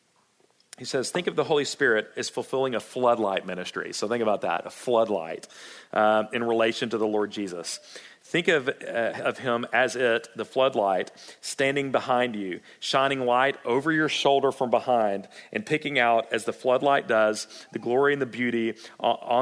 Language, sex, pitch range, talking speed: English, male, 110-130 Hz, 175 wpm